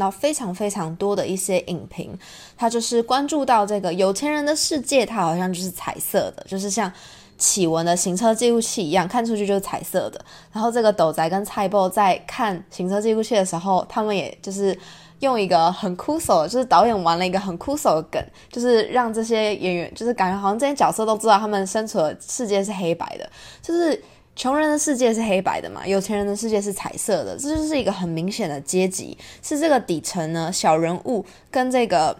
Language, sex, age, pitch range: Chinese, female, 20-39, 185-240 Hz